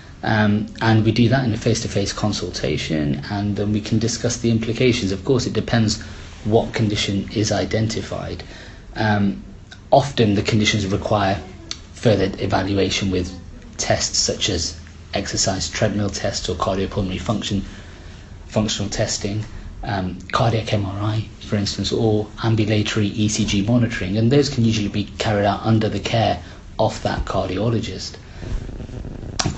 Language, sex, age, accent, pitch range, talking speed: English, male, 30-49, British, 95-110 Hz, 135 wpm